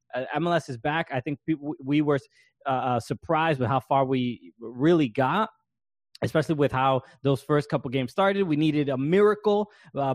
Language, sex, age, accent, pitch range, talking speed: English, male, 20-39, American, 125-170 Hz, 165 wpm